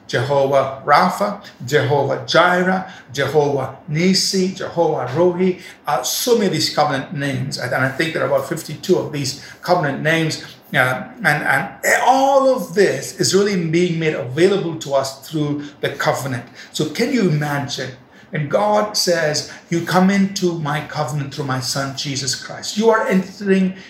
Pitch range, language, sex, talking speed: 135-180 Hz, English, male, 155 wpm